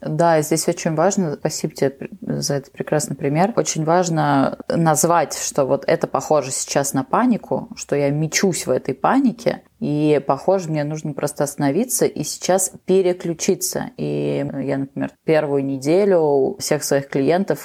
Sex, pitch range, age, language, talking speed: female, 140-175 Hz, 20-39, Russian, 150 wpm